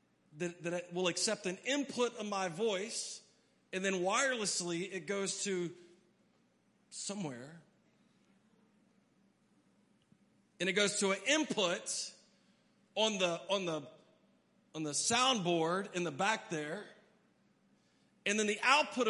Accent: American